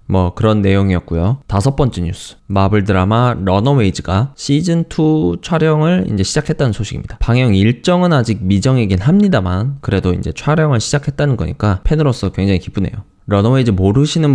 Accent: native